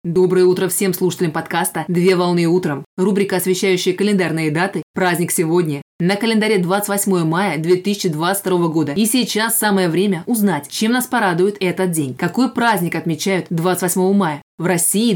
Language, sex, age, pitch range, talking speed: Russian, female, 20-39, 175-200 Hz, 145 wpm